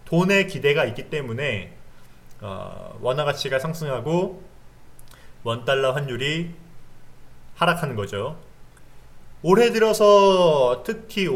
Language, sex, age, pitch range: Korean, male, 30-49, 125-185 Hz